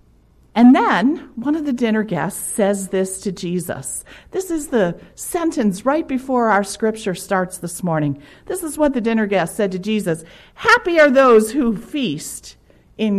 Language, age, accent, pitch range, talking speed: English, 50-69, American, 190-290 Hz, 170 wpm